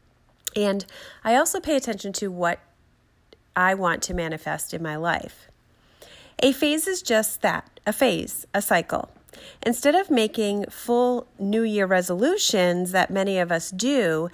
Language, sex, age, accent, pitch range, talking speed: English, female, 30-49, American, 180-245 Hz, 145 wpm